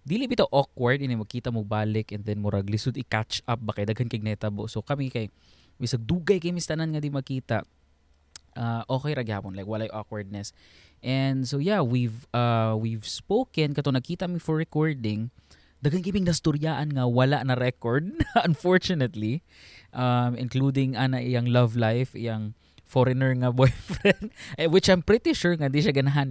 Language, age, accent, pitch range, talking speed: Filipino, 20-39, native, 115-160 Hz, 170 wpm